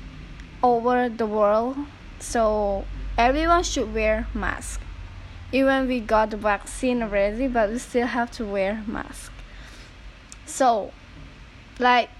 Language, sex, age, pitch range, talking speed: English, female, 10-29, 225-265 Hz, 115 wpm